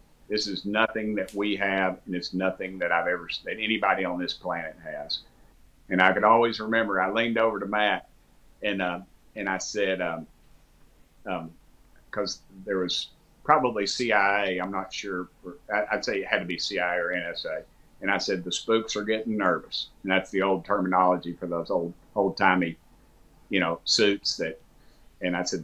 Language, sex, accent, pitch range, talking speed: English, male, American, 90-105 Hz, 180 wpm